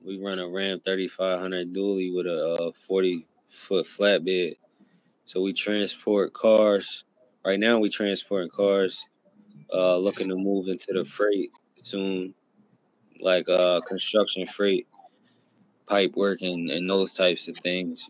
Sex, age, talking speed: male, 20-39, 140 wpm